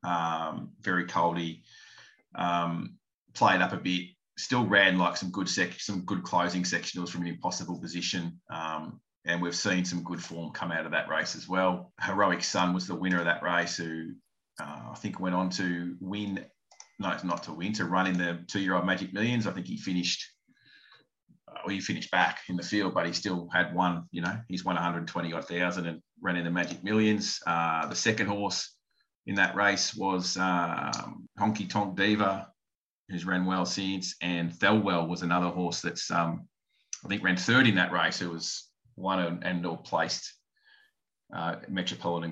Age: 30-49